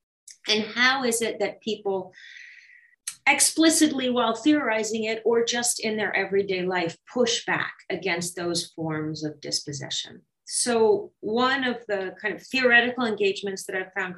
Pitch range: 175-230 Hz